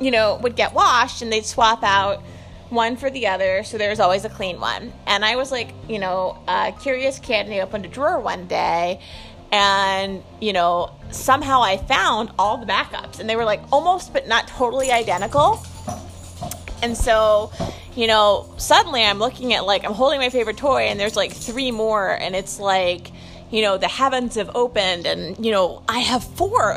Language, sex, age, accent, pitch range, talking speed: English, female, 30-49, American, 195-245 Hz, 195 wpm